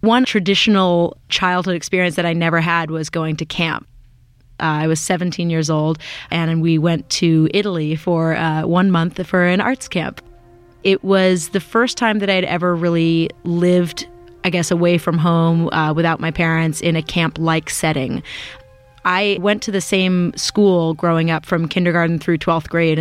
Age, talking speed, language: 30-49, 175 wpm, English